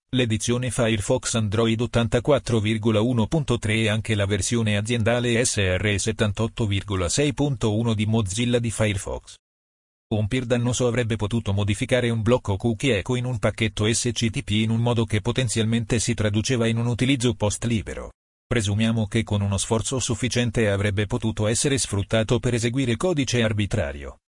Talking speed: 130 wpm